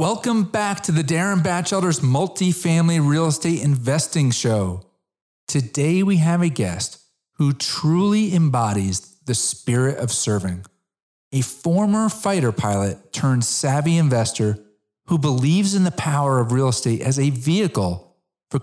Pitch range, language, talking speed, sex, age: 115-165 Hz, English, 135 wpm, male, 40-59